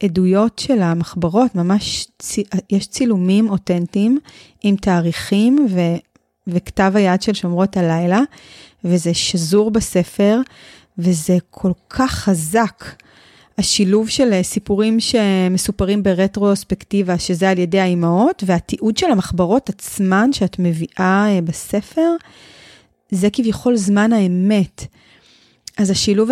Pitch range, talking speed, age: 180-220 Hz, 105 wpm, 30-49